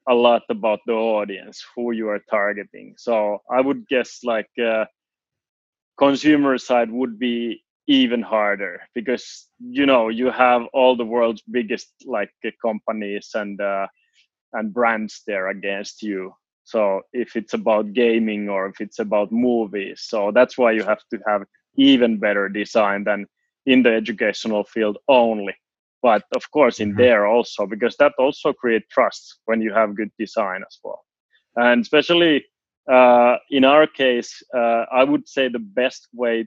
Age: 20-39